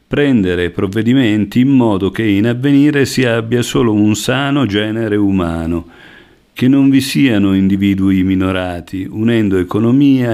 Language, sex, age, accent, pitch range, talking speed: Italian, male, 50-69, native, 100-125 Hz, 130 wpm